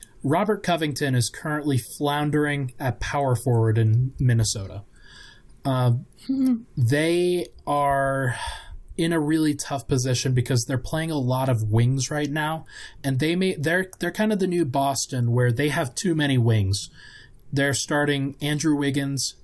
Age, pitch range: 20-39, 120-145 Hz